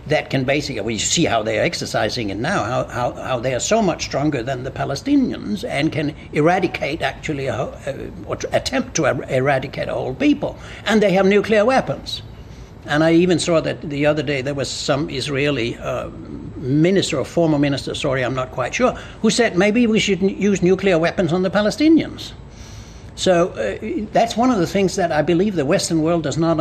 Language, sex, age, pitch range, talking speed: English, male, 60-79, 140-195 Hz, 205 wpm